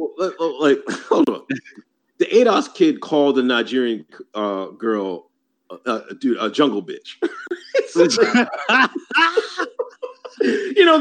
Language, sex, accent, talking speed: English, male, American, 105 wpm